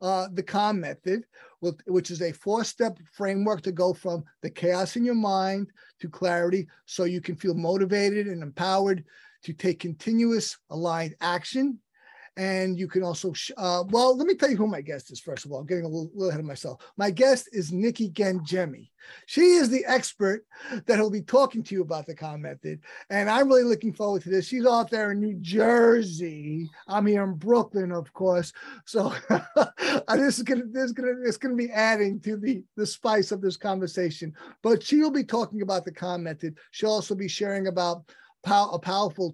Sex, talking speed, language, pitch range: male, 190 wpm, English, 175-210 Hz